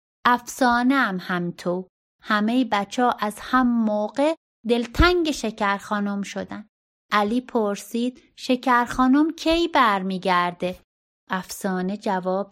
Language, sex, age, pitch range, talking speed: Persian, female, 30-49, 205-280 Hz, 90 wpm